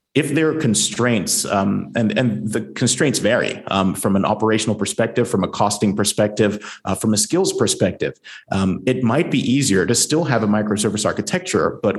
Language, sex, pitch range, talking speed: English, male, 100-110 Hz, 180 wpm